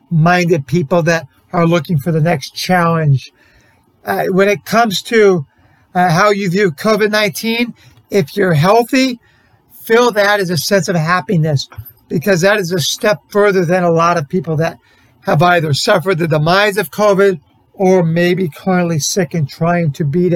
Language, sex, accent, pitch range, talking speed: English, male, American, 165-210 Hz, 165 wpm